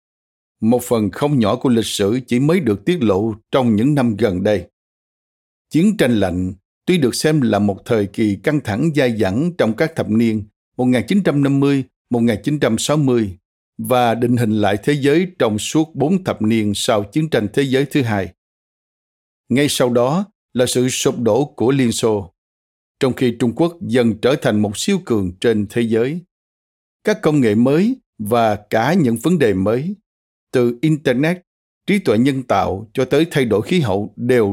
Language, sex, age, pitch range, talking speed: Vietnamese, male, 60-79, 105-150 Hz, 175 wpm